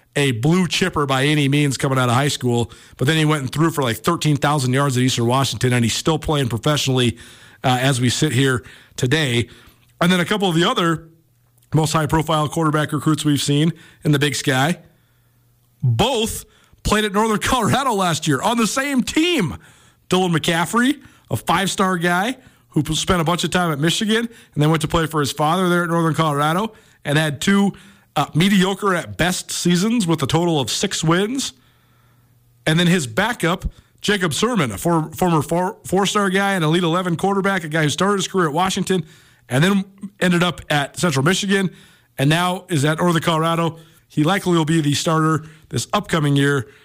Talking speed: 190 wpm